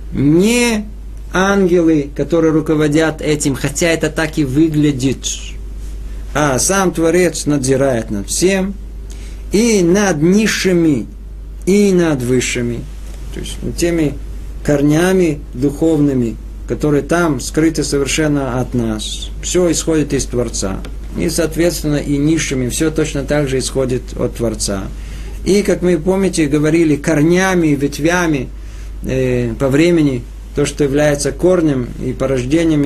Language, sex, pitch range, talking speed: Russian, male, 130-170 Hz, 120 wpm